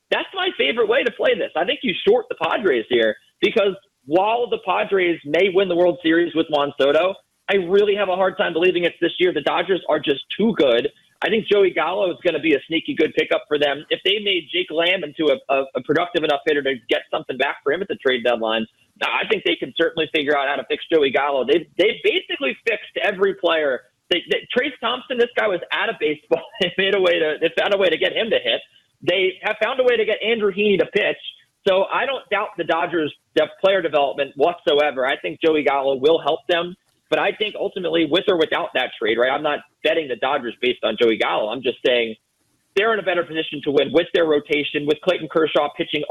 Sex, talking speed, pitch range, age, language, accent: male, 240 wpm, 145-205 Hz, 30-49, English, American